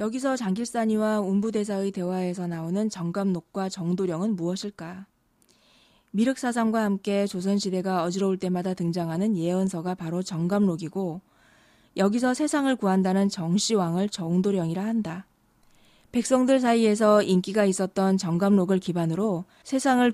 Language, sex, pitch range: Korean, female, 180-215 Hz